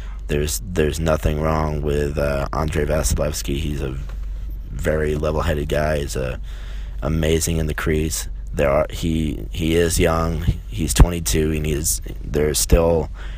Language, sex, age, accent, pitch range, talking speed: English, male, 20-39, American, 70-80 Hz, 140 wpm